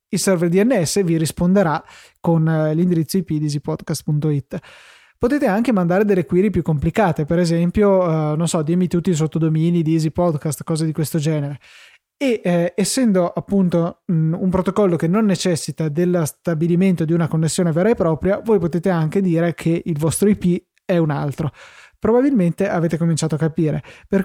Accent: native